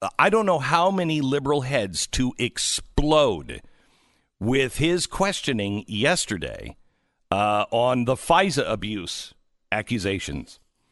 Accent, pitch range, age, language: American, 135-220 Hz, 50-69, English